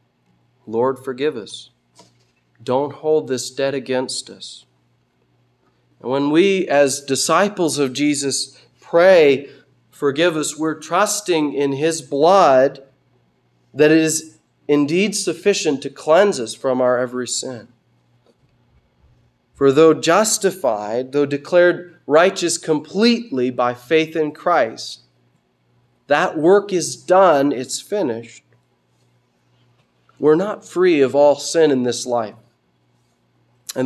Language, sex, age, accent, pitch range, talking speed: English, male, 30-49, American, 125-160 Hz, 110 wpm